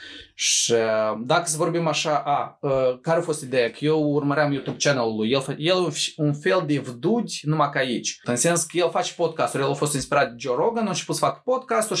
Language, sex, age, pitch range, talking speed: Romanian, male, 20-39, 120-165 Hz, 215 wpm